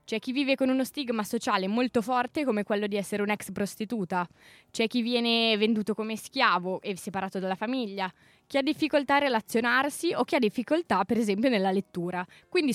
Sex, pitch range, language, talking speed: female, 195-250 Hz, Italian, 185 wpm